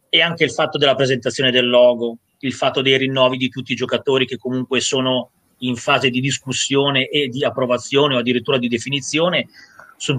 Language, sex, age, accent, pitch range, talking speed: Italian, male, 30-49, native, 120-145 Hz, 185 wpm